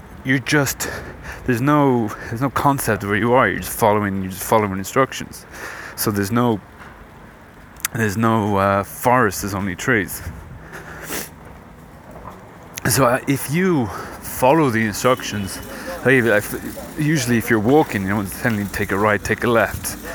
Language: English